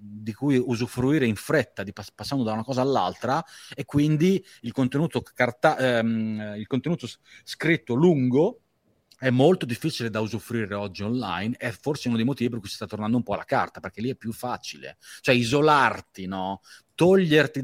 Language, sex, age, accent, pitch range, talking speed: Italian, male, 30-49, native, 110-135 Hz, 180 wpm